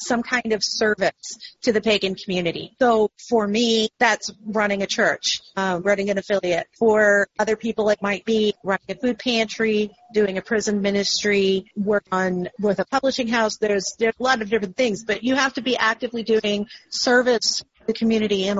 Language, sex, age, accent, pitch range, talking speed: English, female, 40-59, American, 200-235 Hz, 185 wpm